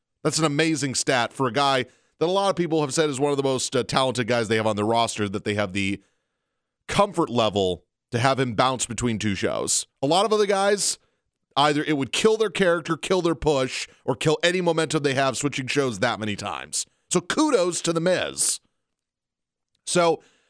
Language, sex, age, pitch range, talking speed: English, male, 30-49, 115-160 Hz, 210 wpm